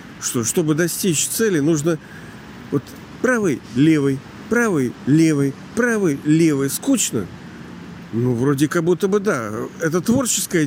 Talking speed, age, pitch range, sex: 120 wpm, 50-69, 140-170 Hz, male